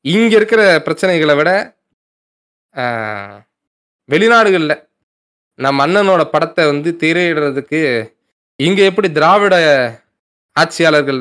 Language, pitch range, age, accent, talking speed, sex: Tamil, 125-170 Hz, 20-39, native, 75 wpm, male